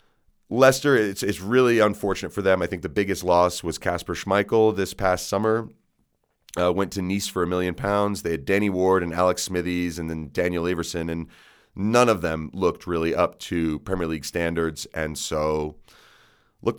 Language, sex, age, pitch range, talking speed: English, male, 30-49, 80-110 Hz, 180 wpm